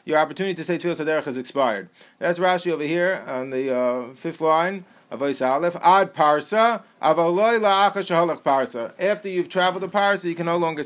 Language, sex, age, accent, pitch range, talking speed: English, male, 40-59, American, 165-205 Hz, 170 wpm